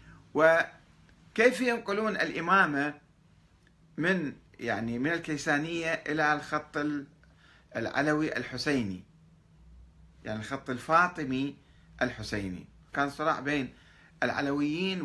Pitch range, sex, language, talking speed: 110-155 Hz, male, Arabic, 75 wpm